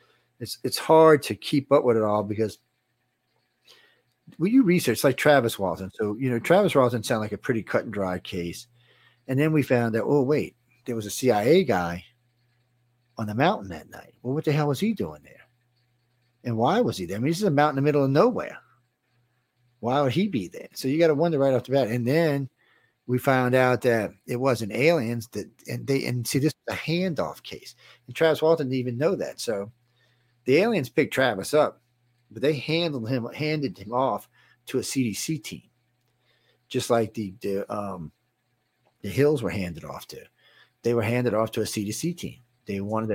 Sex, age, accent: male, 50-69, American